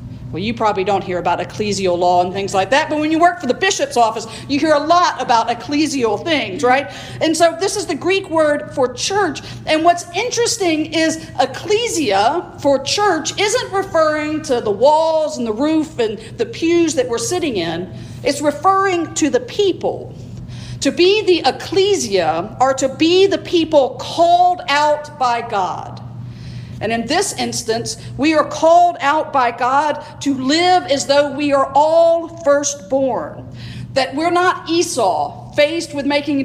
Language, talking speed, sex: English, 170 wpm, female